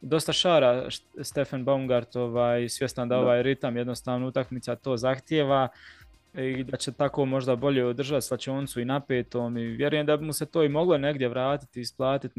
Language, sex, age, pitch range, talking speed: Croatian, male, 20-39, 120-140 Hz, 170 wpm